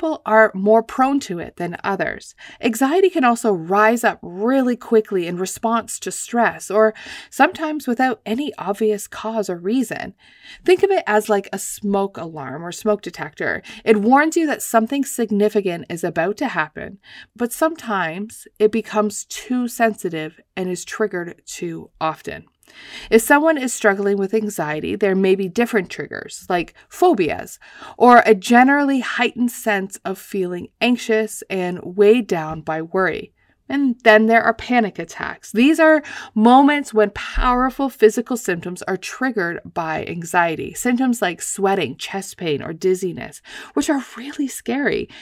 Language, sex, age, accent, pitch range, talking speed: English, female, 30-49, American, 190-245 Hz, 150 wpm